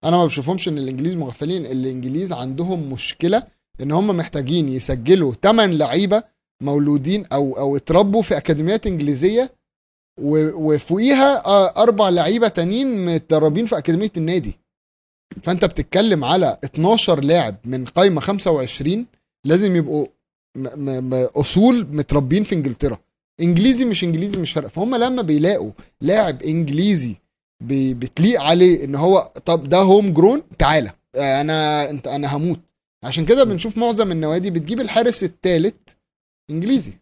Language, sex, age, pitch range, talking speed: Arabic, male, 30-49, 145-195 Hz, 125 wpm